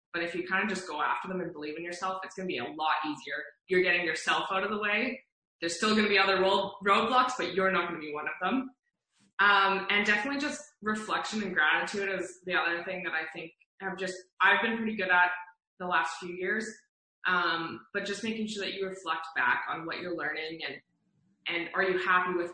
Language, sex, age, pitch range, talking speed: English, female, 20-39, 170-200 Hz, 235 wpm